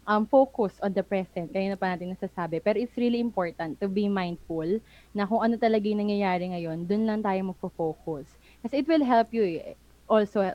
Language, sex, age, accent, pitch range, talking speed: Filipino, female, 20-39, native, 185-230 Hz, 195 wpm